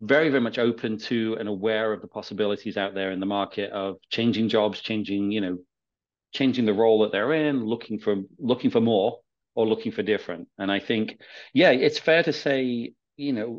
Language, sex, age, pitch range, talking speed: English, male, 40-59, 100-120 Hz, 205 wpm